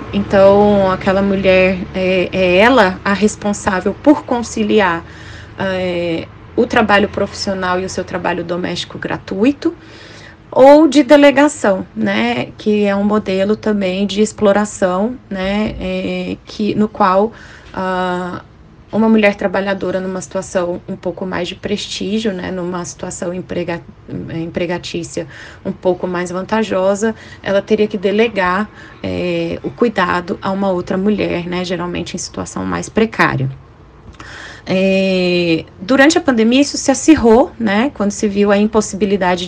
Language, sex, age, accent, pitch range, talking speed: Portuguese, female, 20-39, Brazilian, 180-215 Hz, 125 wpm